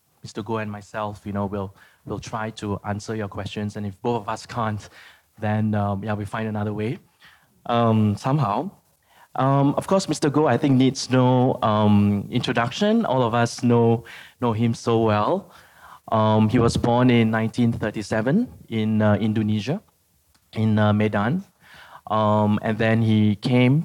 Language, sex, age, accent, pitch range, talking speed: English, male, 20-39, Malaysian, 105-125 Hz, 160 wpm